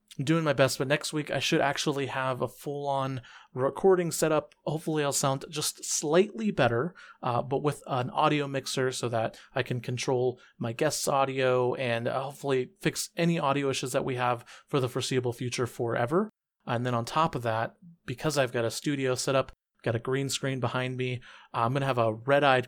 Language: English